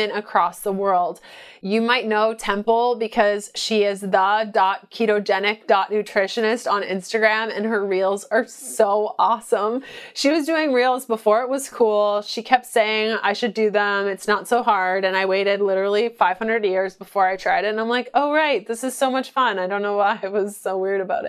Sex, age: female, 20-39